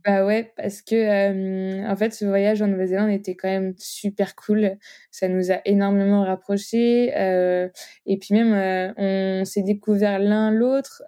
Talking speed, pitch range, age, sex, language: 170 wpm, 190-215 Hz, 20-39, female, French